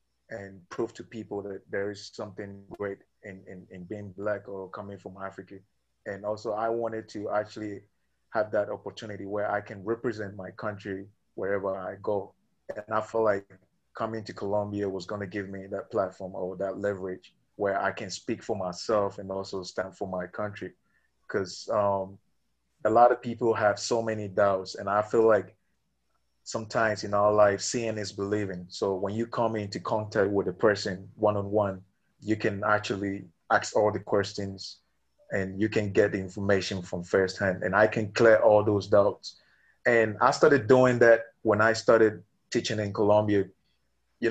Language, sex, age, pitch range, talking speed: English, male, 20-39, 95-110 Hz, 175 wpm